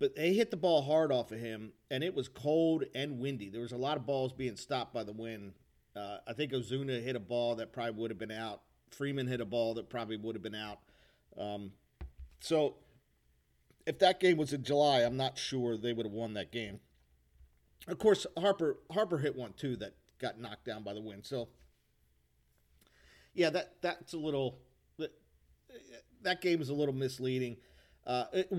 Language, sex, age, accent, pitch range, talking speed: English, male, 50-69, American, 105-135 Hz, 195 wpm